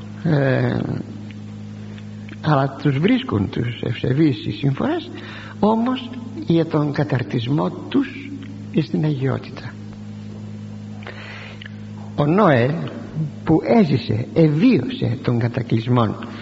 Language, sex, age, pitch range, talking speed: Greek, male, 60-79, 105-160 Hz, 80 wpm